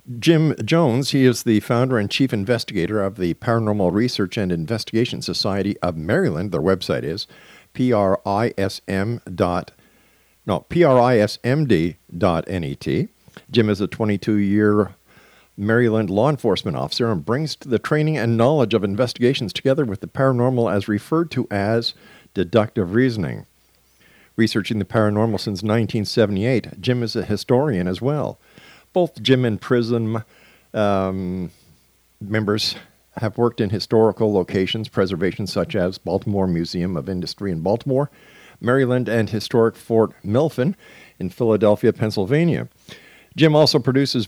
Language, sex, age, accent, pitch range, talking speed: English, male, 50-69, American, 95-125 Hz, 125 wpm